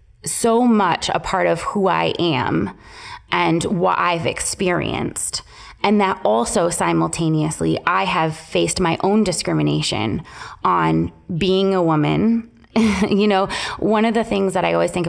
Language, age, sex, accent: English, 20-39, female, American